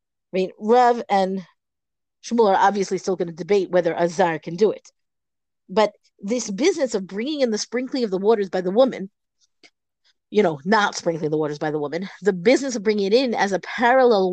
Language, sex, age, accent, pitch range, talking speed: English, female, 40-59, American, 185-245 Hz, 195 wpm